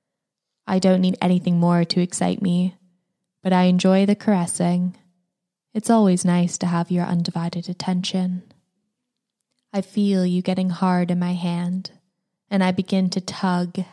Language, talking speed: English, 145 wpm